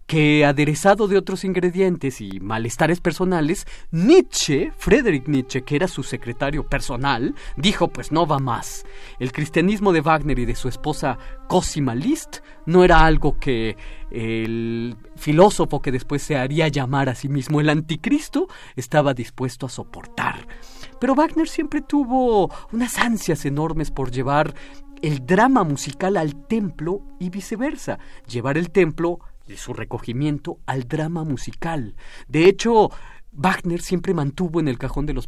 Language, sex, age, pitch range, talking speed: Spanish, male, 40-59, 135-185 Hz, 145 wpm